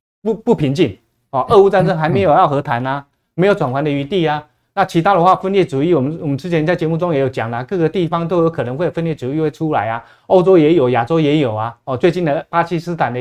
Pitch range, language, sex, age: 130-180 Hz, Chinese, male, 30-49